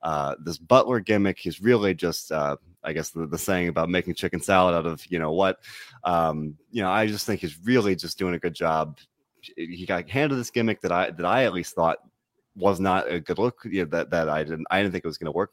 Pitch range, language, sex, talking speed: 80-105 Hz, English, male, 245 wpm